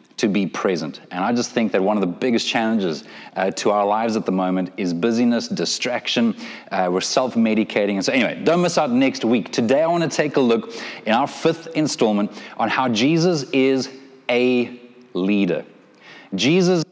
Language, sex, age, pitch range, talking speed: English, male, 30-49, 115-140 Hz, 185 wpm